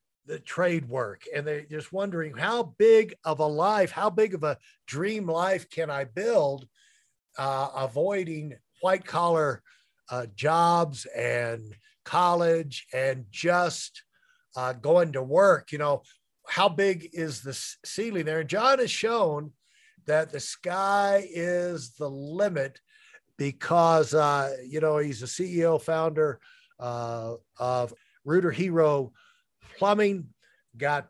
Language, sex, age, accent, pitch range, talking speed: English, male, 50-69, American, 145-200 Hz, 130 wpm